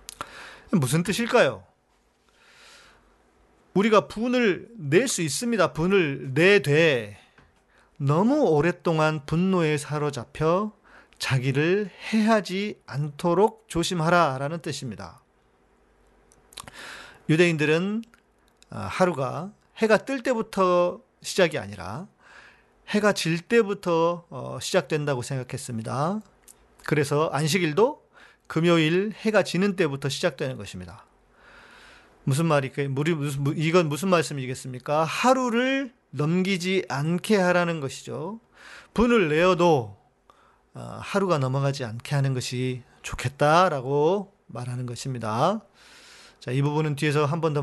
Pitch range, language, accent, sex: 135-190 Hz, Korean, native, male